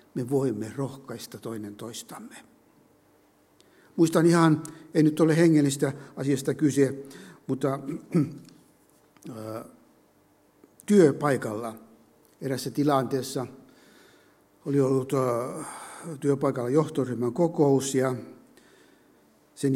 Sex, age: male, 60-79